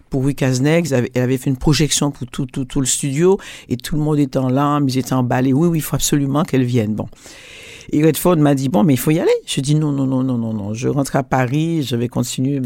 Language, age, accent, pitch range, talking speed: French, 60-79, French, 130-160 Hz, 265 wpm